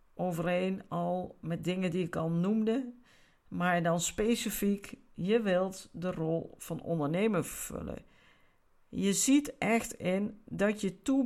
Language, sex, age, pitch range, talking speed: Dutch, female, 50-69, 180-230 Hz, 135 wpm